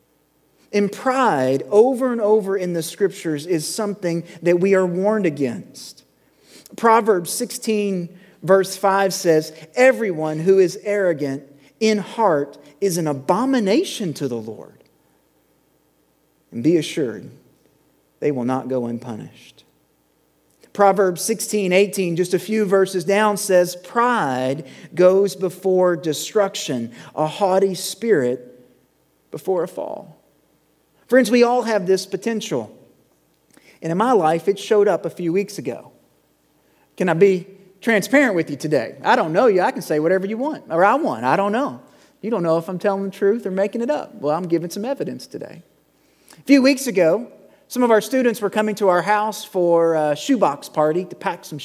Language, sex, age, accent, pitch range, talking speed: English, male, 40-59, American, 160-210 Hz, 160 wpm